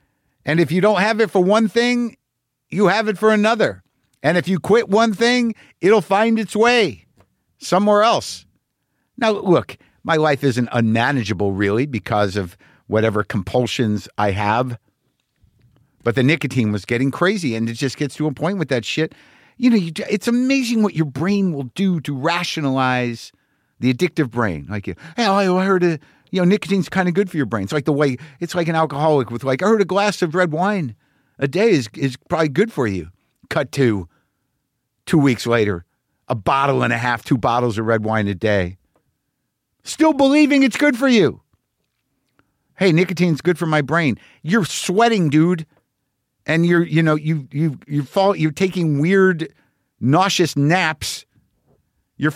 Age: 50-69